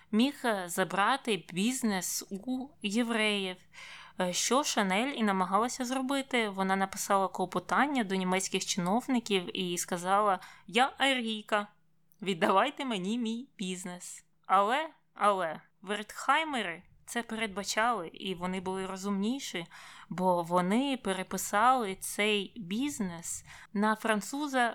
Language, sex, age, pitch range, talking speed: Ukrainian, female, 20-39, 185-235 Hz, 95 wpm